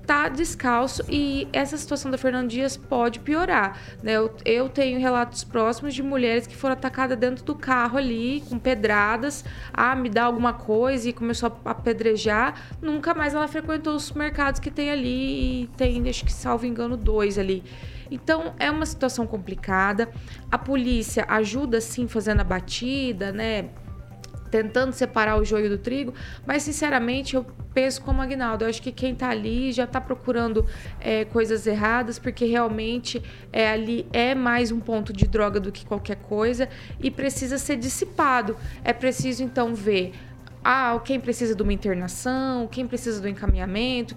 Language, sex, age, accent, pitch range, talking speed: Portuguese, female, 20-39, Brazilian, 220-265 Hz, 170 wpm